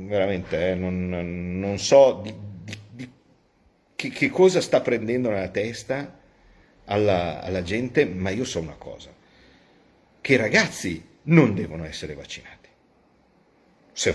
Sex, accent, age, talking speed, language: male, native, 50-69, 130 wpm, Italian